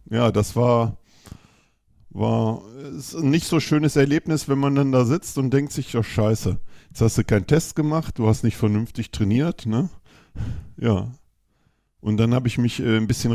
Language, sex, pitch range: German, male, 110-130 Hz